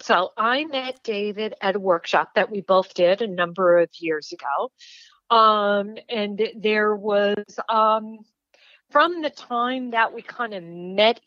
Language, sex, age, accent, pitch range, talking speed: English, female, 50-69, American, 185-230 Hz, 155 wpm